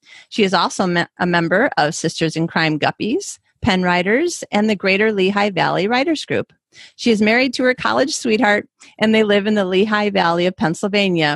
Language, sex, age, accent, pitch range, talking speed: English, female, 40-59, American, 175-235 Hz, 185 wpm